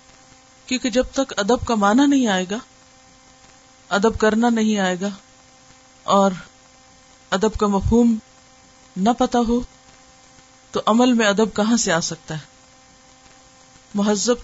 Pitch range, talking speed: 180-225 Hz, 130 wpm